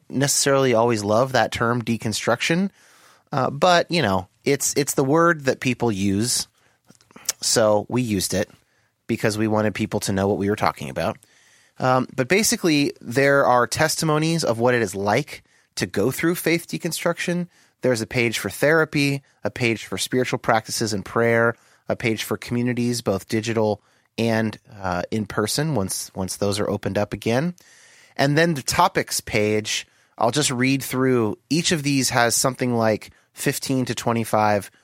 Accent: American